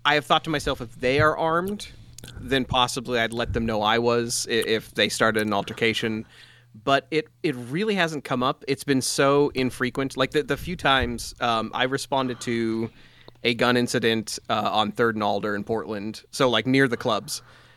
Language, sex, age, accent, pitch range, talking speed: English, male, 30-49, American, 110-130 Hz, 195 wpm